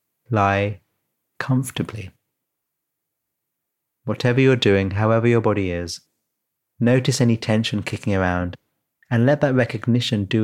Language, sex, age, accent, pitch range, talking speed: English, male, 30-49, British, 100-120 Hz, 110 wpm